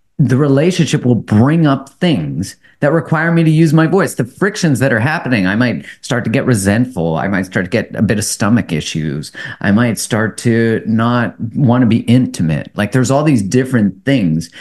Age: 30-49